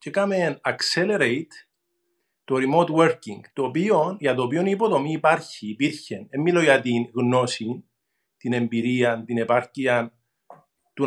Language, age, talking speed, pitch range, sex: Greek, 50-69, 130 wpm, 130-185 Hz, male